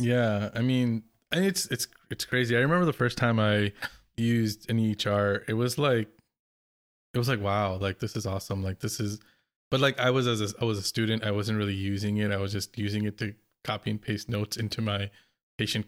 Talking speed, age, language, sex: 225 wpm, 20-39, English, male